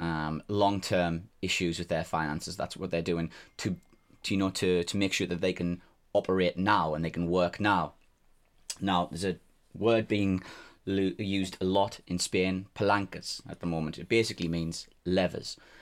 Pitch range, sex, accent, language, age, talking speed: 85-100 Hz, male, British, English, 20-39, 175 wpm